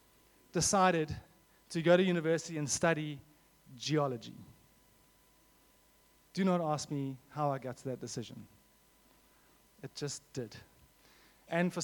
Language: English